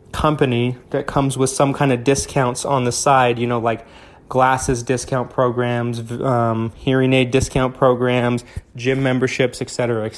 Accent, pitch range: American, 125-150 Hz